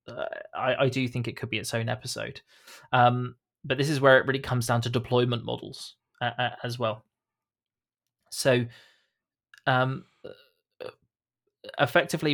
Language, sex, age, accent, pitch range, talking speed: English, male, 20-39, British, 120-135 Hz, 145 wpm